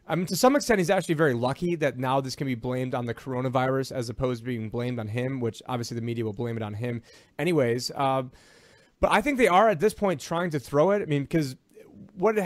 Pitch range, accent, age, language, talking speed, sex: 125-150 Hz, American, 30-49, English, 250 wpm, male